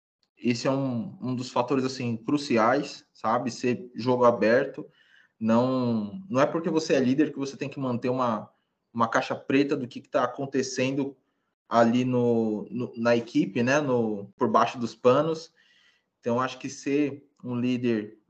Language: Portuguese